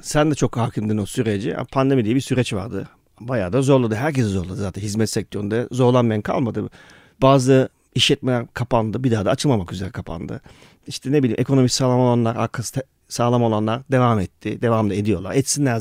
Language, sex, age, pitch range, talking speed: Turkish, male, 40-59, 120-160 Hz, 165 wpm